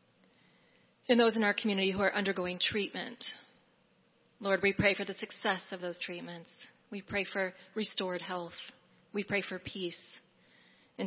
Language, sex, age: English, female, 30-49